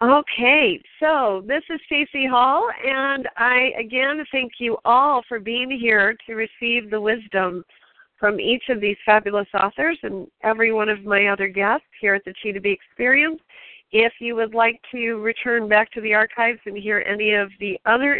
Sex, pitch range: female, 205-250 Hz